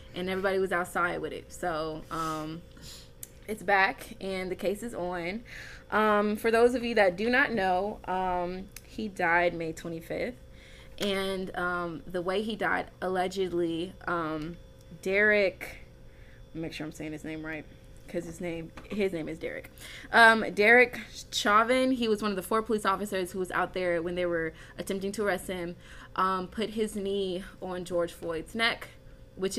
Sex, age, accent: female, 20-39, American